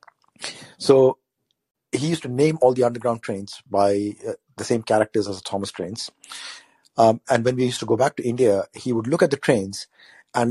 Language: English